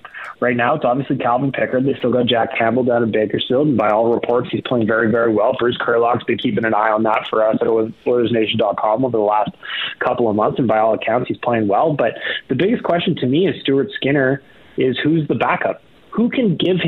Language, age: English, 30-49